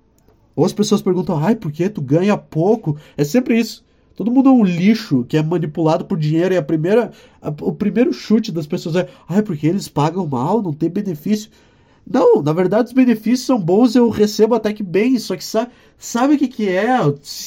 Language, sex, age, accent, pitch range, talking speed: Portuguese, male, 20-39, Brazilian, 155-220 Hz, 215 wpm